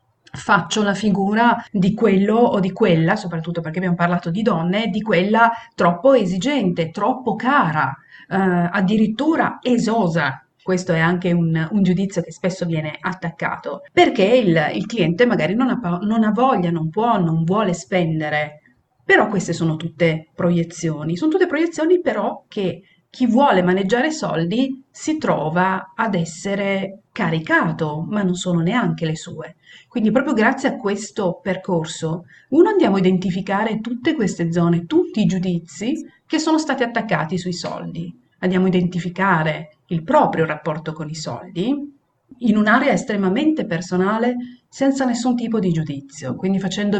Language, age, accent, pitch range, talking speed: Italian, 40-59, native, 170-230 Hz, 145 wpm